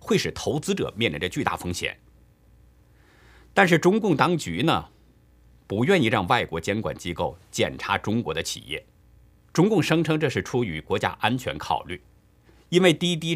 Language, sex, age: Chinese, male, 50-69